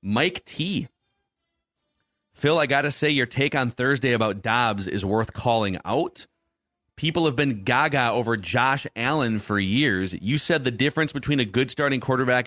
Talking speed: 170 wpm